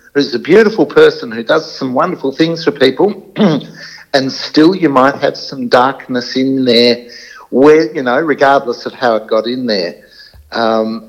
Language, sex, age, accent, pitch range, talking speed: English, male, 60-79, Australian, 115-165 Hz, 170 wpm